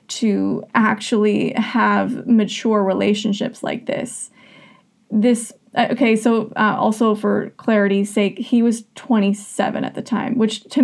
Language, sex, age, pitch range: English, female, 20-39, 210-250 Hz